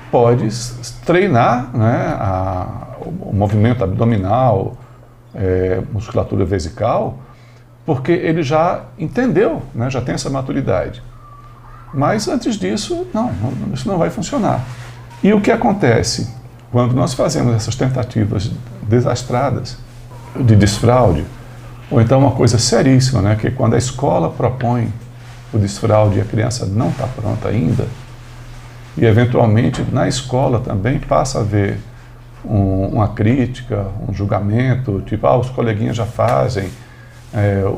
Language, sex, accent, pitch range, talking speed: Portuguese, male, Brazilian, 115-135 Hz, 125 wpm